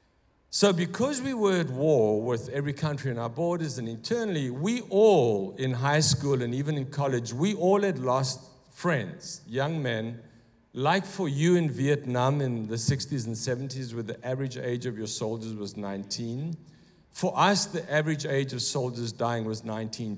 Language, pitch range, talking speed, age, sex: English, 120-160 Hz, 175 wpm, 50-69, male